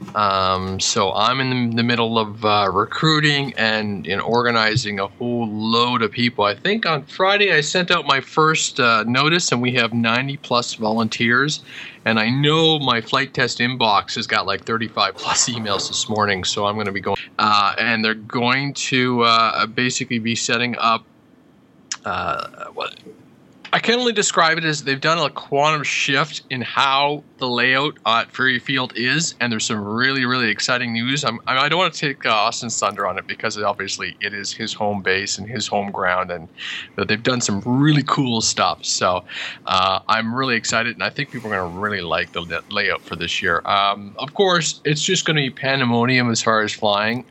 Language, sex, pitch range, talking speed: English, male, 105-135 Hz, 200 wpm